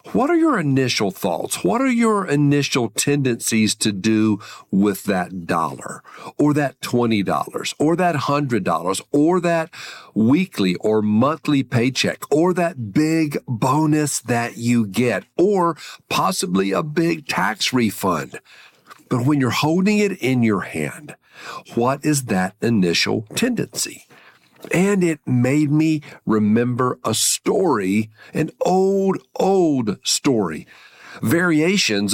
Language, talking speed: English, 120 wpm